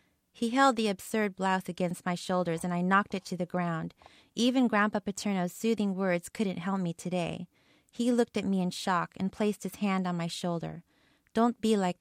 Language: English